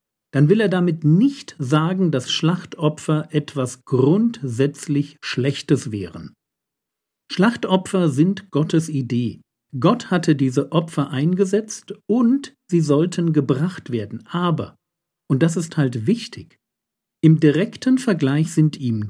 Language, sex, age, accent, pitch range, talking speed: German, male, 50-69, German, 130-180 Hz, 115 wpm